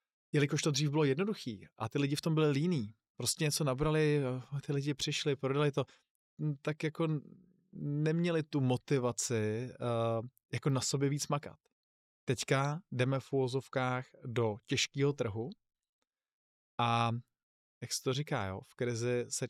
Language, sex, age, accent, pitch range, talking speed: Czech, male, 20-39, native, 115-135 Hz, 140 wpm